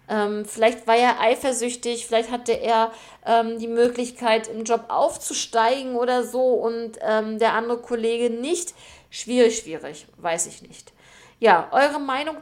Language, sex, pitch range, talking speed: German, female, 210-255 Hz, 140 wpm